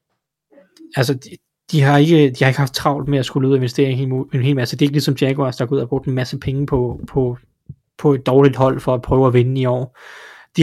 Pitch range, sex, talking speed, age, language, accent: 130-145 Hz, male, 275 wpm, 20-39, Danish, native